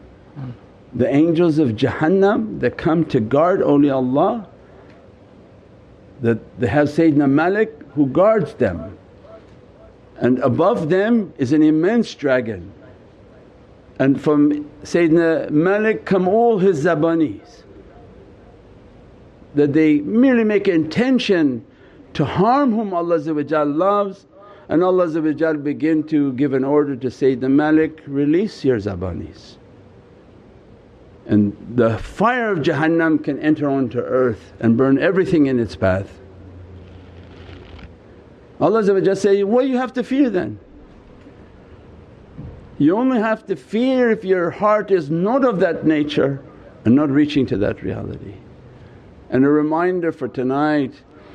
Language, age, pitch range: English, 50-69, 125-175 Hz